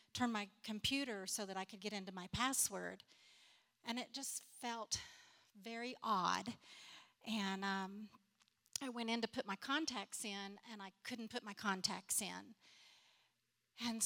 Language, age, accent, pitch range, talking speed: English, 40-59, American, 200-240 Hz, 150 wpm